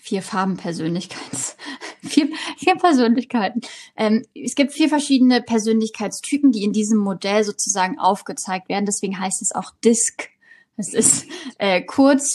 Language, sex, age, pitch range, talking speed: German, female, 20-39, 205-250 Hz, 130 wpm